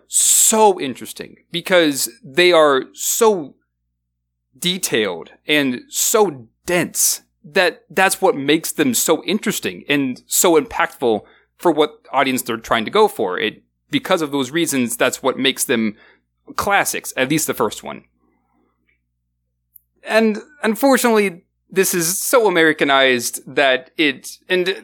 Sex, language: male, English